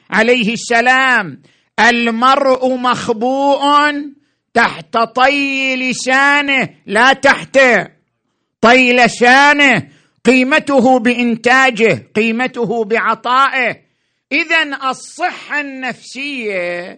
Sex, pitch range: male, 215-280 Hz